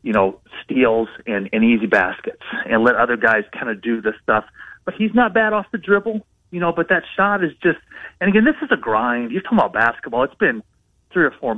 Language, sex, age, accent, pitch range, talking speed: English, male, 30-49, American, 115-165 Hz, 240 wpm